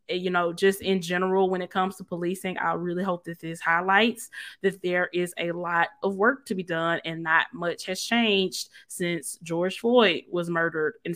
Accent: American